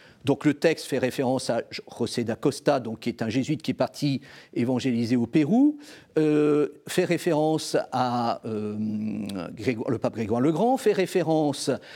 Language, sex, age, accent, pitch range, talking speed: French, male, 50-69, French, 130-210 Hz, 150 wpm